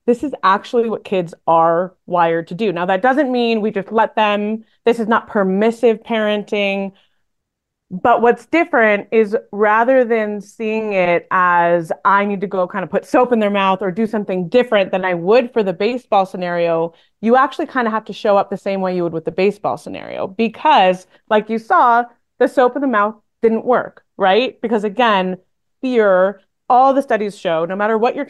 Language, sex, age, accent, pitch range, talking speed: English, female, 20-39, American, 190-245 Hz, 195 wpm